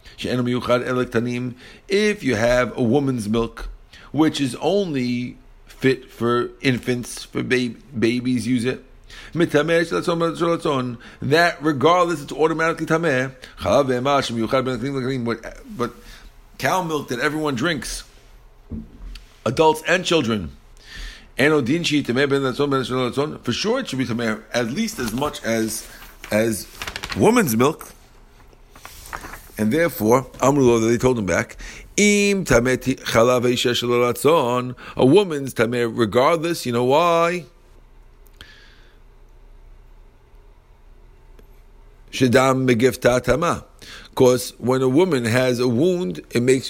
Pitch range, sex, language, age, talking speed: 115-145 Hz, male, English, 50-69, 85 wpm